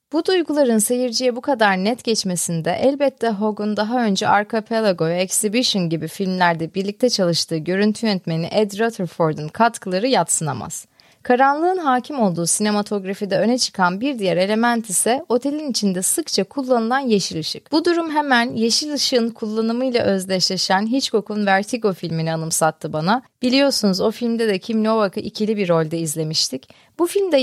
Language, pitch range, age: Turkish, 195-255 Hz, 30-49